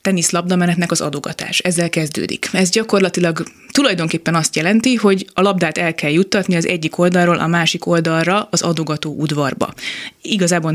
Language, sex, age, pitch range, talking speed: Hungarian, female, 20-39, 155-195 Hz, 150 wpm